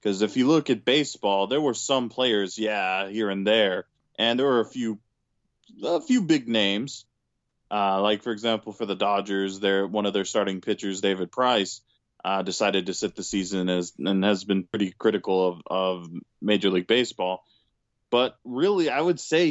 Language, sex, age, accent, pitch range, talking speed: English, male, 20-39, American, 100-120 Hz, 185 wpm